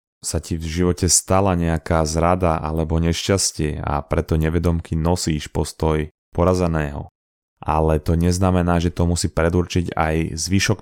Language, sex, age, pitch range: Slovak, male, 20-39, 85-95 Hz